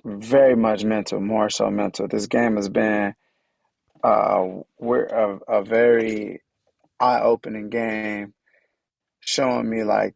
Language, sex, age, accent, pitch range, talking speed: English, male, 20-39, American, 100-115 Hz, 120 wpm